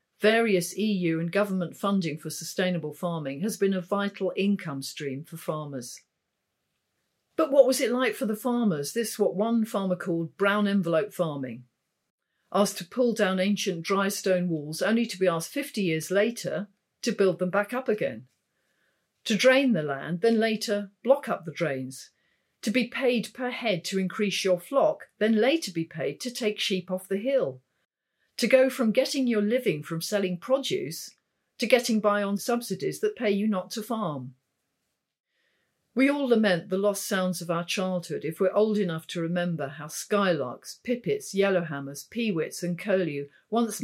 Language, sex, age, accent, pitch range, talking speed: English, female, 50-69, British, 175-220 Hz, 170 wpm